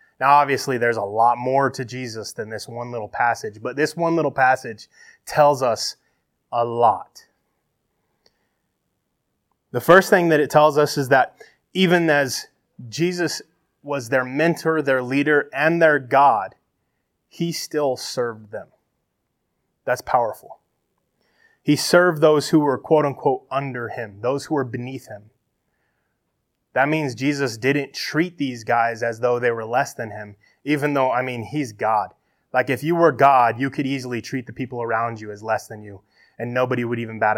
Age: 20-39